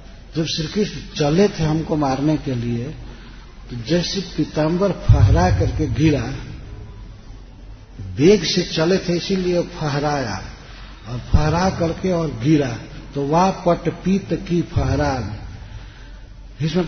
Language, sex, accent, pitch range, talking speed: Hindi, male, native, 125-170 Hz, 115 wpm